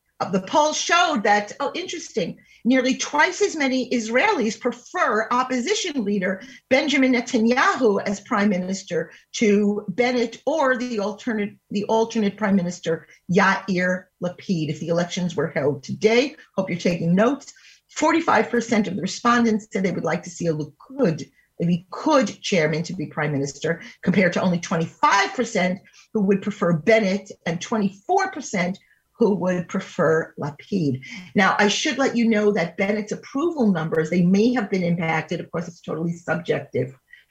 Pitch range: 165-225 Hz